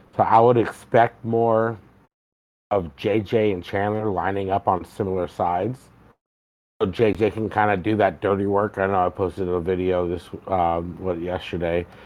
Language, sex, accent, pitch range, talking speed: English, male, American, 95-110 Hz, 165 wpm